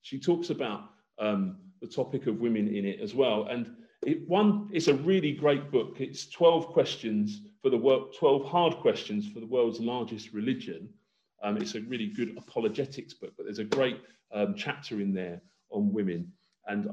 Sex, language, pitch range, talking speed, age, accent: male, English, 115-170 Hz, 185 wpm, 40-59, British